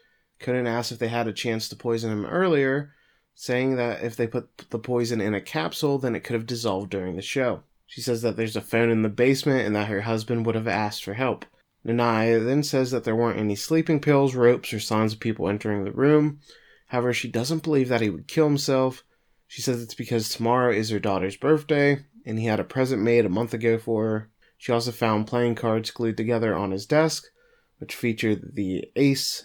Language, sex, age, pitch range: English, male, 20-39, 110-140 Hz